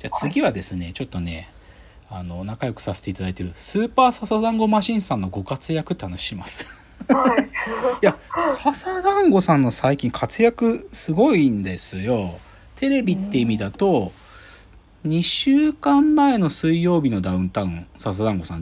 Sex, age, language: male, 40-59, Japanese